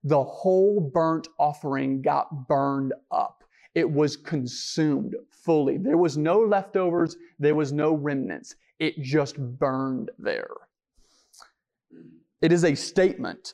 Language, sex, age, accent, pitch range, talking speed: English, male, 30-49, American, 155-220 Hz, 120 wpm